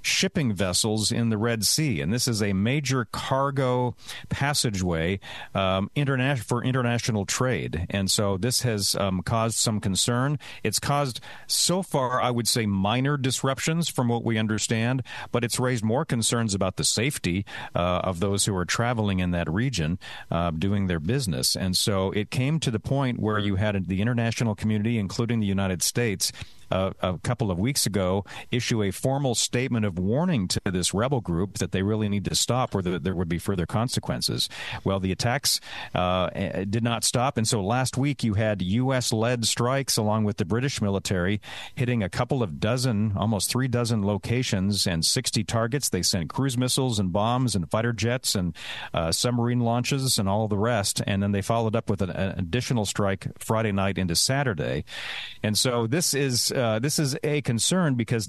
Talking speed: 185 wpm